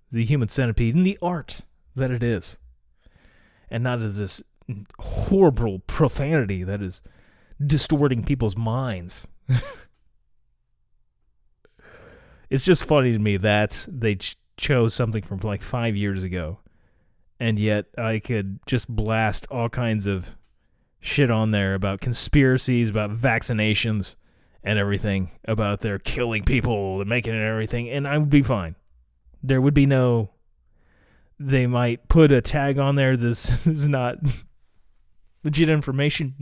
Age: 30-49